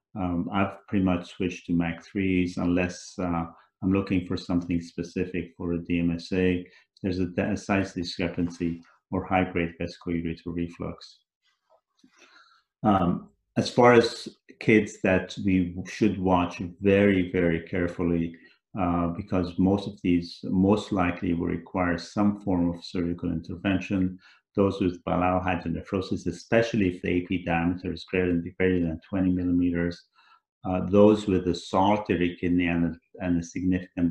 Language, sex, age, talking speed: English, male, 50-69, 135 wpm